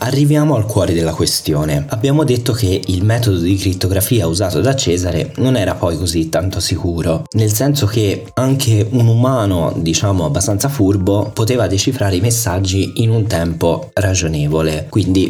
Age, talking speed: 20-39, 155 wpm